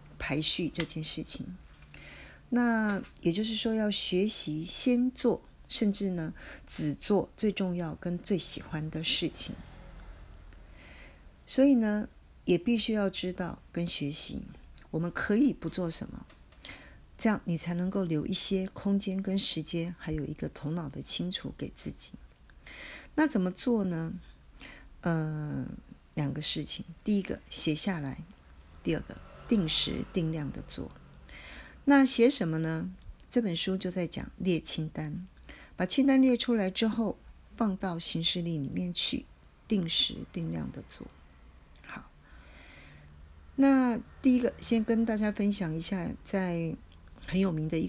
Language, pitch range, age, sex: Chinese, 155-210 Hz, 40-59, female